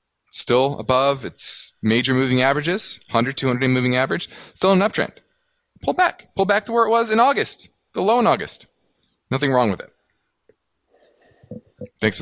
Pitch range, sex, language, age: 110-160 Hz, male, English, 20-39